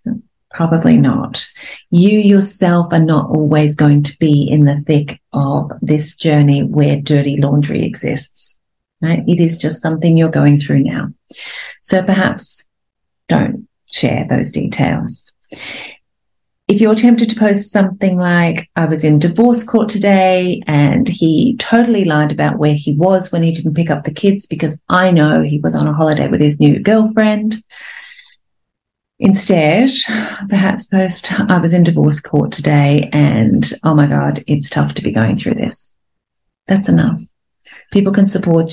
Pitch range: 150-195 Hz